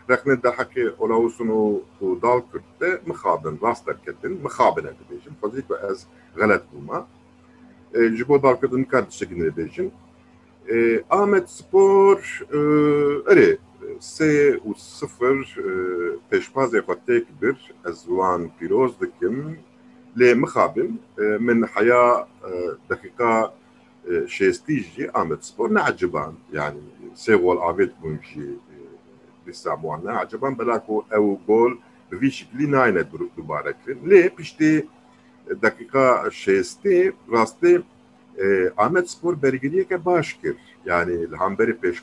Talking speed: 95 wpm